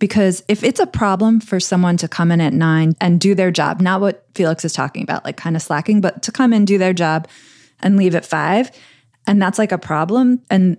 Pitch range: 160-195 Hz